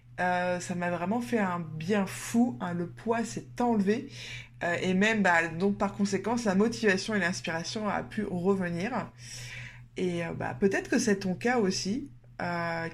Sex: female